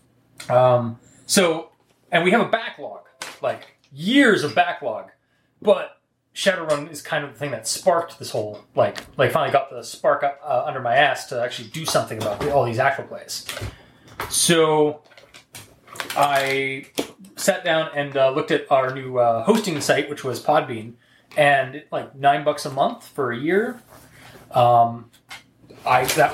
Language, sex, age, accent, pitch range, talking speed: English, male, 30-49, American, 125-165 Hz, 160 wpm